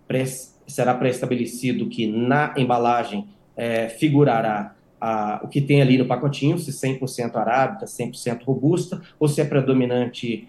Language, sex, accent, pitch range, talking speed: Portuguese, male, Brazilian, 125-155 Hz, 120 wpm